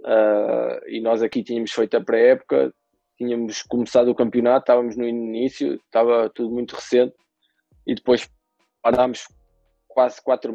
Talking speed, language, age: 135 wpm, Portuguese, 20-39